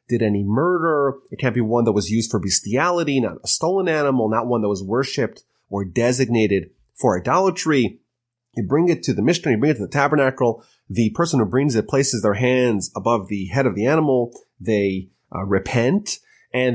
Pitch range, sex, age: 110-145 Hz, male, 30-49